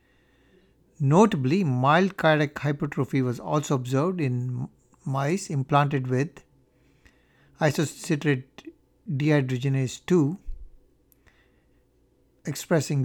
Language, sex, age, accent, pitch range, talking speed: English, male, 60-79, Indian, 130-155 Hz, 70 wpm